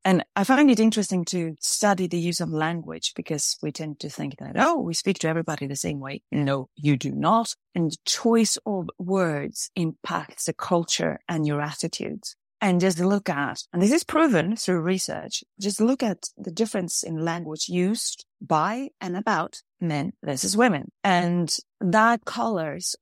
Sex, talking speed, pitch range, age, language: female, 175 wpm, 160-215 Hz, 30-49, English